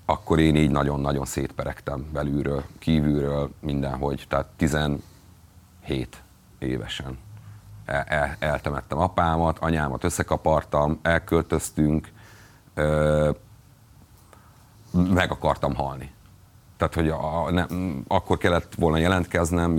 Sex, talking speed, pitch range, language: male, 75 wpm, 75-100 Hz, Hungarian